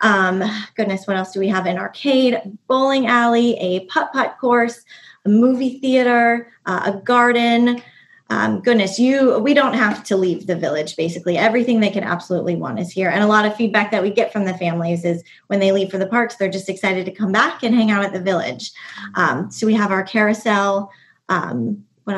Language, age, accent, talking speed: English, 20-39, American, 205 wpm